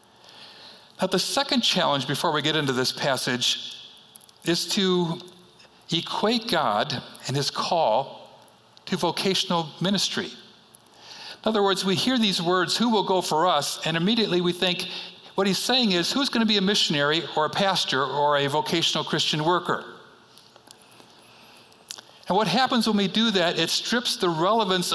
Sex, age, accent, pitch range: male, 60-79, American, 160-200 Hz